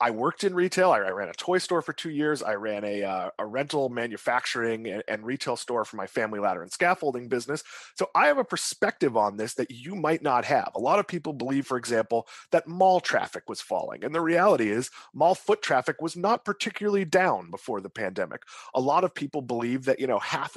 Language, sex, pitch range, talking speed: English, male, 125-180 Hz, 225 wpm